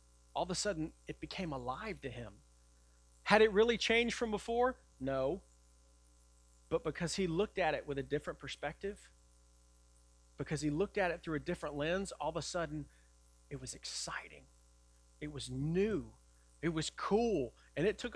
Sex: male